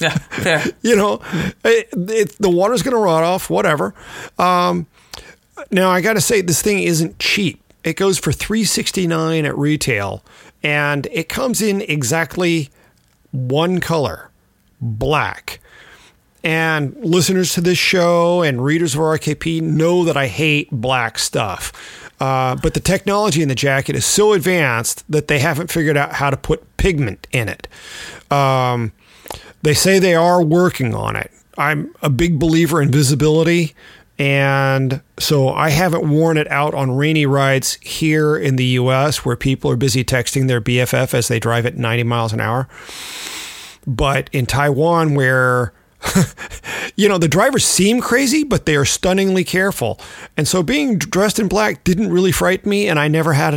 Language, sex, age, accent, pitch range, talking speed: English, male, 40-59, American, 135-180 Hz, 165 wpm